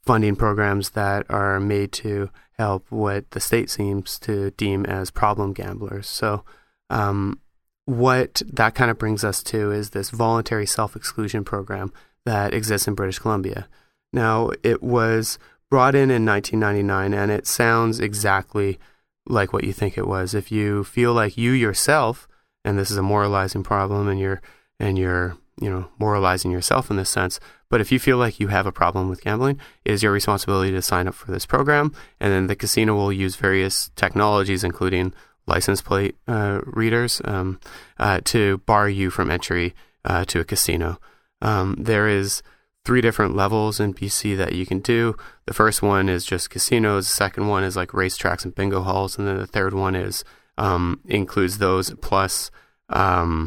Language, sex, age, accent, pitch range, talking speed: English, male, 30-49, American, 95-110 Hz, 175 wpm